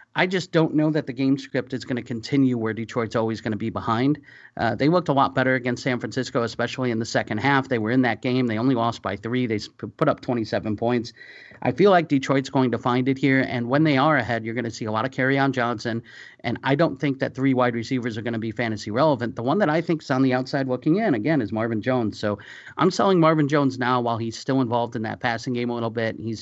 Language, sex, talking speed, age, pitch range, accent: English, male, 270 wpm, 40-59, 115-135 Hz, American